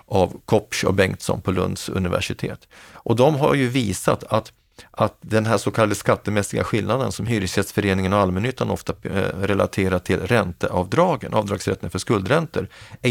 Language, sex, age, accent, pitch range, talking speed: Swedish, male, 40-59, native, 95-115 Hz, 150 wpm